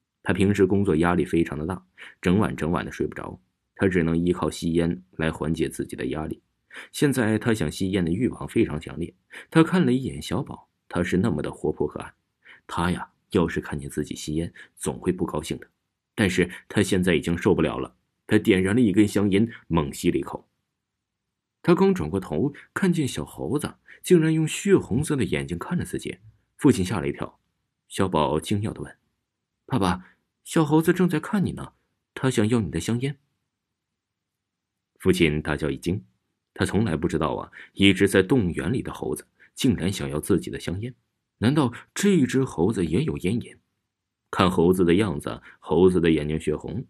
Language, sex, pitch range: Chinese, male, 85-125 Hz